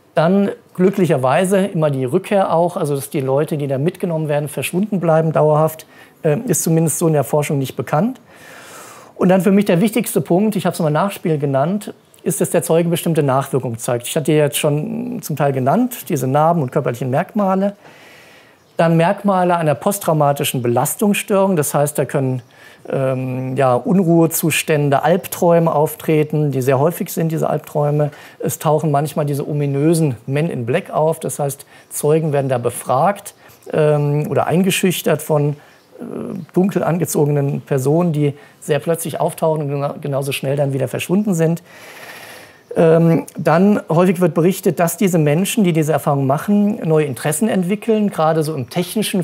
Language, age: German, 50-69